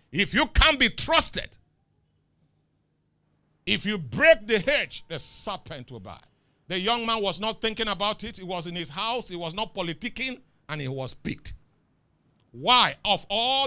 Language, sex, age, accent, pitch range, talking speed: English, male, 50-69, Nigerian, 125-200 Hz, 165 wpm